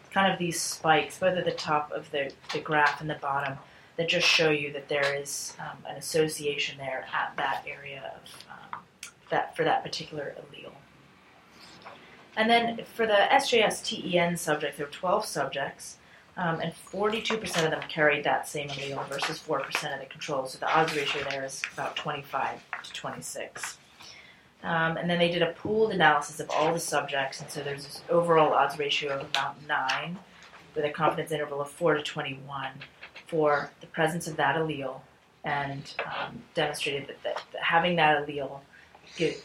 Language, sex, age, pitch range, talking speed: English, female, 30-49, 140-170 Hz, 180 wpm